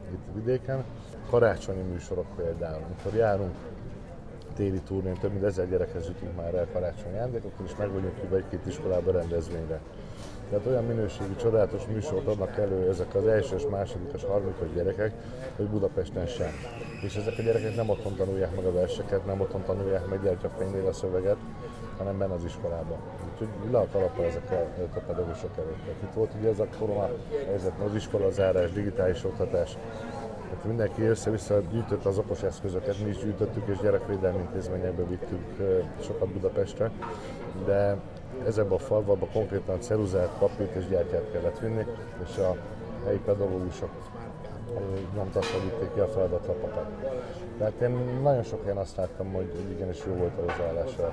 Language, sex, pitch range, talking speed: Hungarian, male, 95-115 Hz, 155 wpm